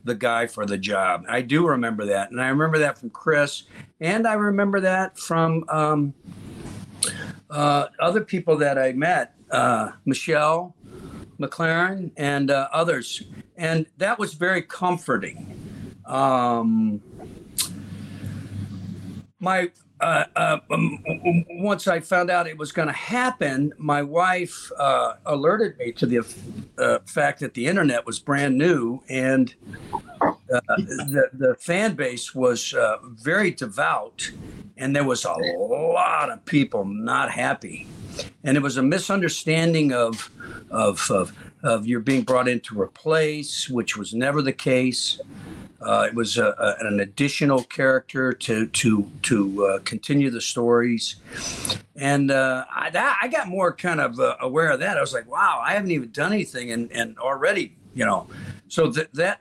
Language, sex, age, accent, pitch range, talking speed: English, male, 60-79, American, 120-170 Hz, 150 wpm